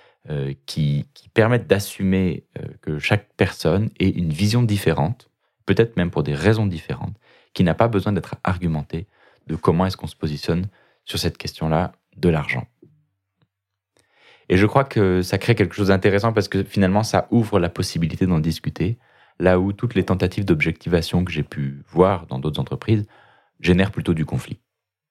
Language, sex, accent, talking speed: French, male, French, 165 wpm